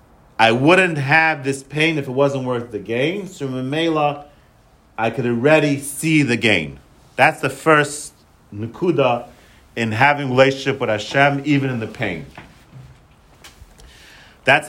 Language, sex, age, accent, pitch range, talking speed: English, male, 40-59, American, 105-150 Hz, 145 wpm